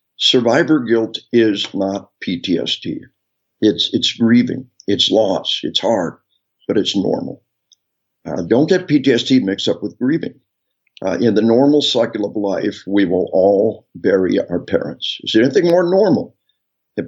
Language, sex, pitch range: English, male, 105-150 Hz